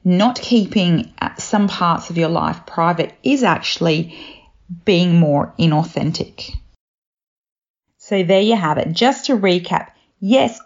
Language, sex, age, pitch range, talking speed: English, female, 40-59, 175-240 Hz, 125 wpm